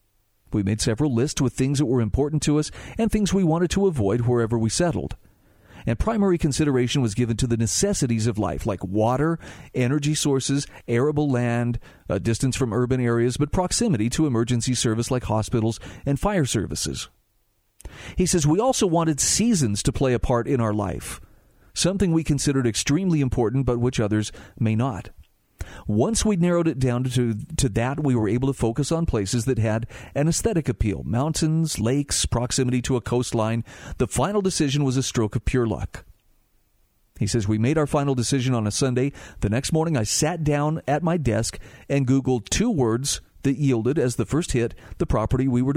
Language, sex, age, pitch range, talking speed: English, male, 40-59, 110-150 Hz, 185 wpm